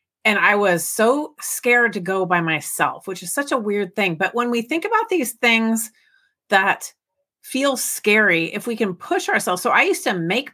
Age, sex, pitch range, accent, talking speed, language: 40-59, female, 190-255 Hz, American, 200 wpm, English